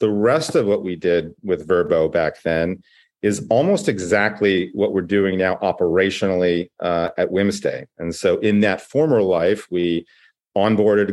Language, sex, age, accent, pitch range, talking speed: English, male, 40-59, American, 95-115 Hz, 155 wpm